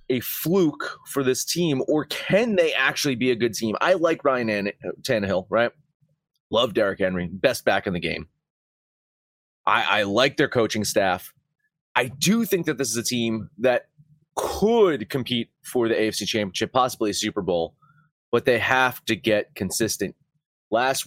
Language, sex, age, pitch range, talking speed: English, male, 30-49, 100-135 Hz, 165 wpm